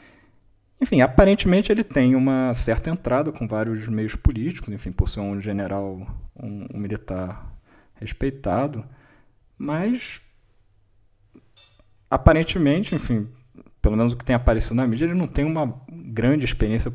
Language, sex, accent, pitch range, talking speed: Portuguese, male, Brazilian, 105-125 Hz, 130 wpm